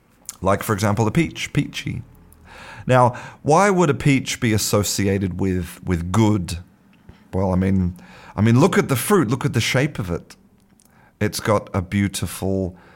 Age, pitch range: 40-59, 95-115 Hz